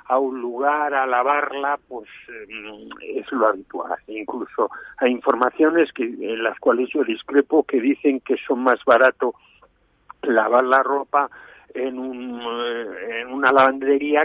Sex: male